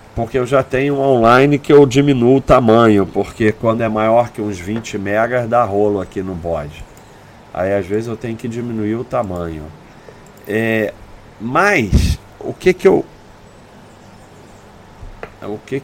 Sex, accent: male, Brazilian